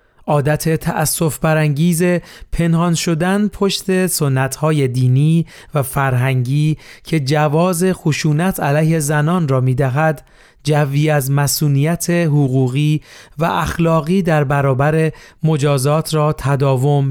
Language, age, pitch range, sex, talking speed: Persian, 40-59, 140-160 Hz, male, 100 wpm